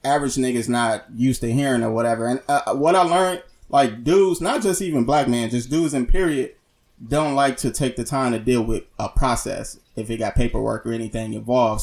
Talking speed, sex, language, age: 215 wpm, male, English, 20-39